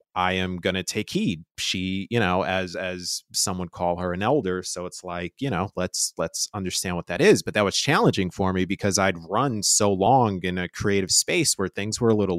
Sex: male